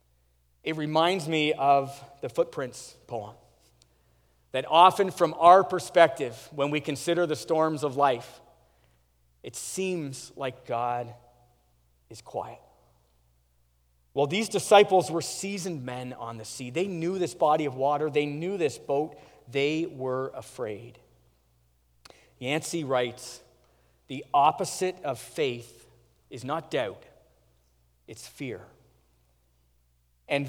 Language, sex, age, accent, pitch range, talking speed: English, male, 40-59, American, 120-195 Hz, 115 wpm